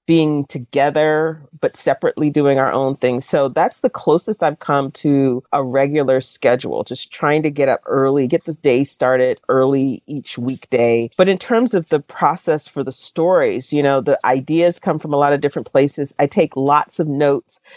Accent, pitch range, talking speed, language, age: American, 130-150 Hz, 190 wpm, English, 40-59